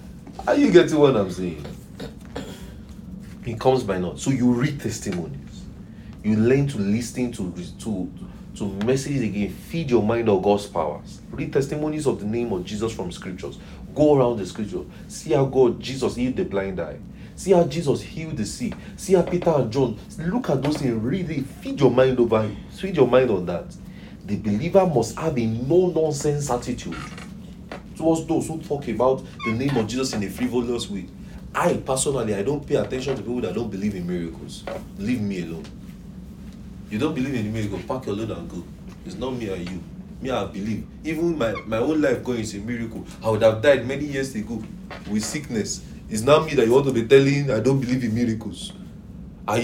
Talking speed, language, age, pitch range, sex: 200 wpm, English, 40-59, 110-150 Hz, male